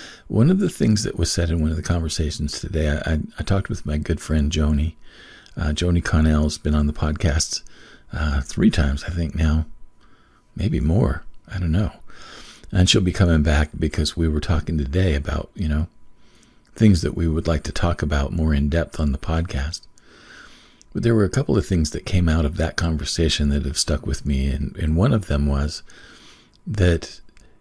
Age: 50-69